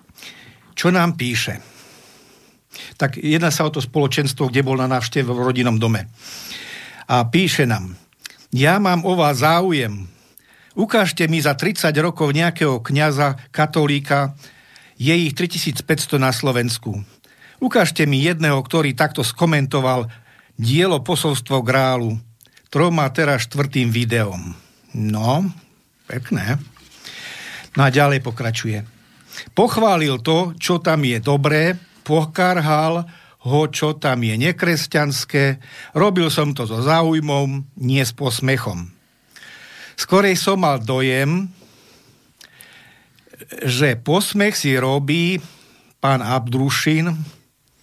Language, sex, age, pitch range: Slovak, male, 50-69, 130-160 Hz